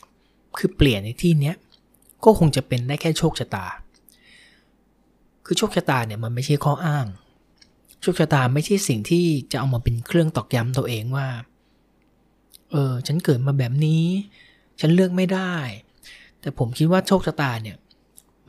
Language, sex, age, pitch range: Thai, male, 20-39, 120-160 Hz